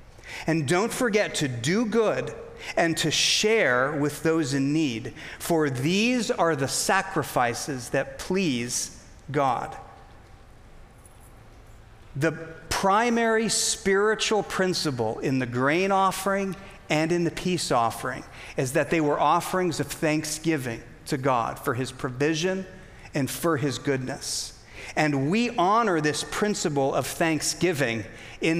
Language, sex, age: English, male, 40-59